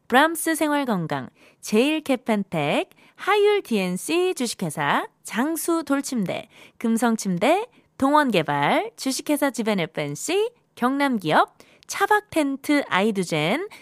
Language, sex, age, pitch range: Korean, female, 20-39, 175-285 Hz